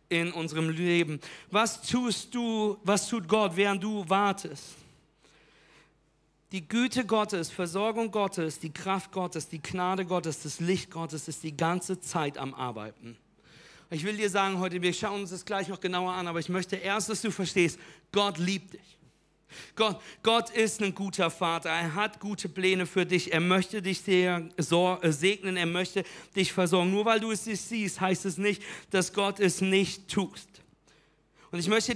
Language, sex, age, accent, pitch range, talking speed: German, male, 50-69, German, 185-225 Hz, 175 wpm